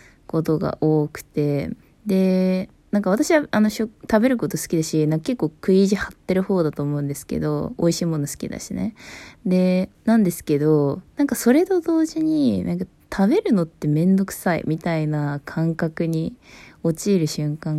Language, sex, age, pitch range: Japanese, female, 20-39, 155-215 Hz